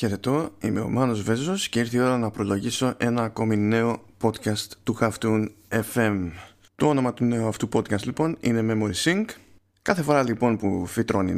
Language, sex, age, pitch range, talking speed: Greek, male, 20-39, 100-125 Hz, 175 wpm